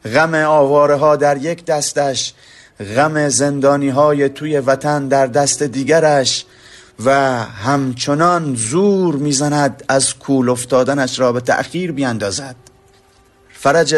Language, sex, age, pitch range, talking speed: Persian, male, 30-49, 120-140 Hz, 110 wpm